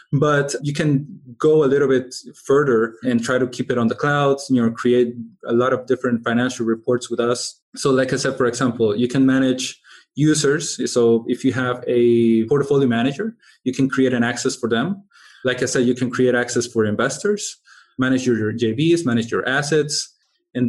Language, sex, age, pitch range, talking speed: English, male, 20-39, 120-135 Hz, 195 wpm